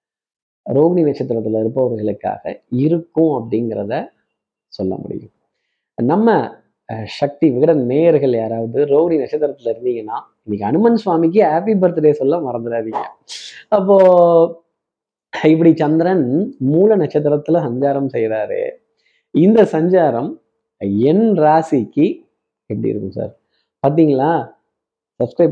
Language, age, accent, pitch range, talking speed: Tamil, 20-39, native, 135-200 Hz, 90 wpm